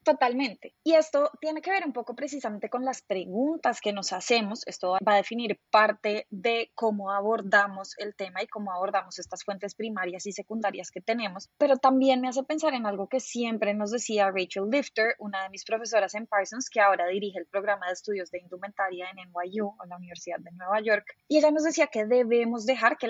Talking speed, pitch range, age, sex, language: 205 wpm, 195-255 Hz, 20-39, female, Spanish